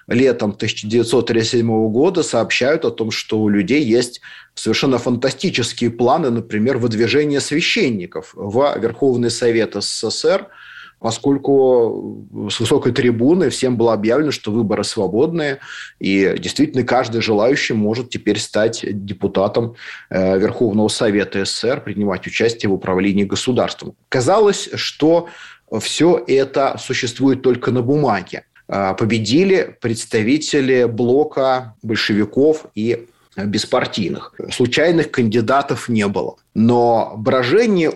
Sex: male